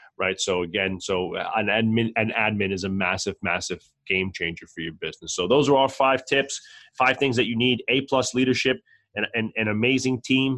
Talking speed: 200 wpm